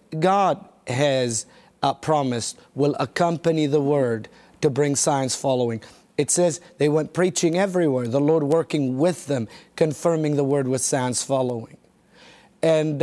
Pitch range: 135-165 Hz